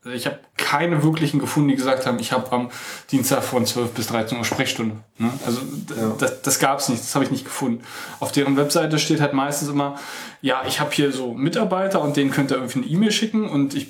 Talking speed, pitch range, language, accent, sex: 230 wpm, 130-150 Hz, German, German, male